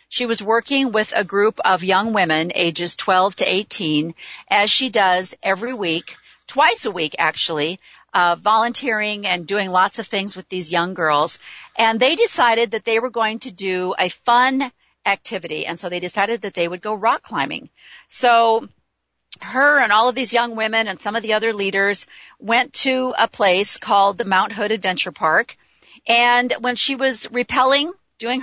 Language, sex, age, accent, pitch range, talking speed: English, female, 40-59, American, 185-245 Hz, 180 wpm